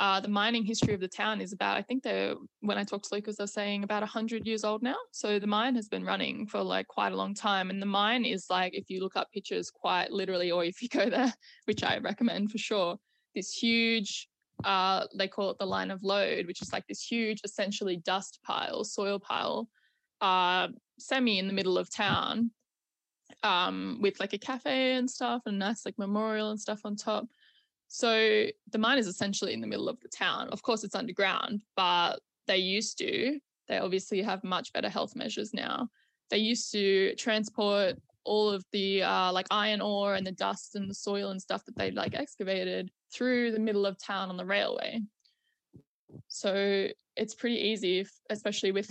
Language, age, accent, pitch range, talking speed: English, 10-29, Australian, 195-230 Hz, 200 wpm